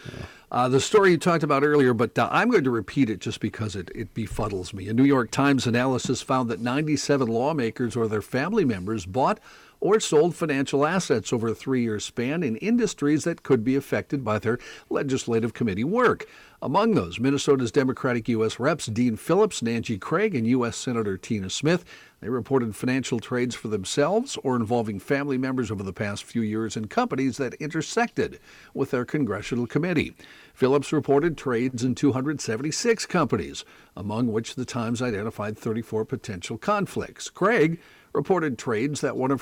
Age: 50-69